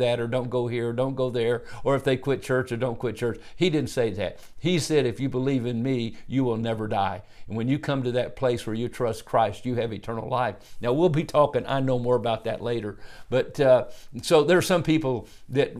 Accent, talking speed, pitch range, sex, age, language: American, 245 wpm, 115-135 Hz, male, 50-69, English